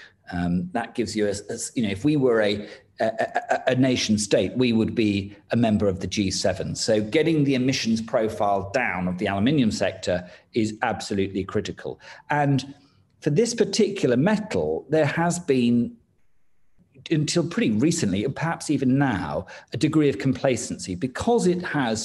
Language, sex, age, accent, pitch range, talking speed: English, male, 40-59, British, 100-140 Hz, 160 wpm